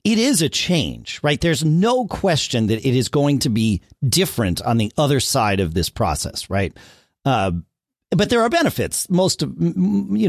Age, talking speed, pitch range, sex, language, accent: 40-59, 180 wpm, 110-175 Hz, male, English, American